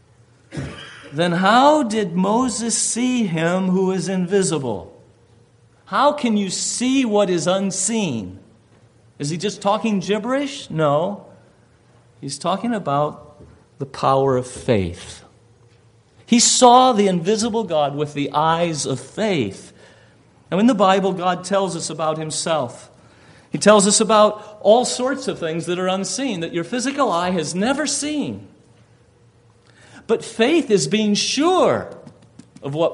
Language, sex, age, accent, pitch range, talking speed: English, male, 50-69, American, 145-230 Hz, 135 wpm